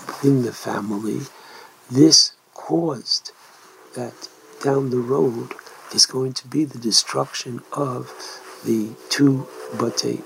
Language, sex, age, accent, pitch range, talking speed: English, male, 60-79, American, 115-140 Hz, 110 wpm